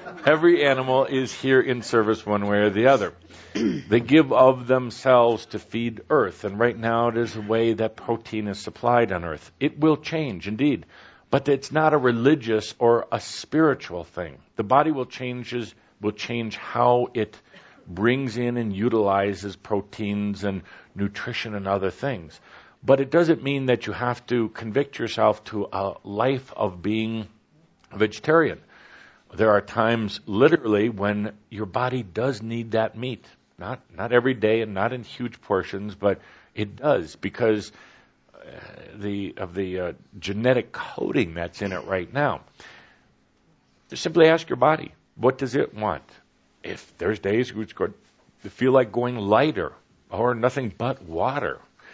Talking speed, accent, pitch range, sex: 160 wpm, American, 105-130 Hz, male